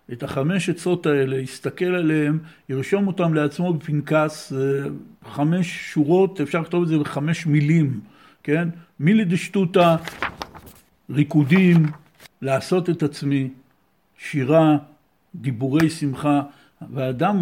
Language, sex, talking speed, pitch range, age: Hebrew, male, 100 wpm, 140-170 Hz, 60-79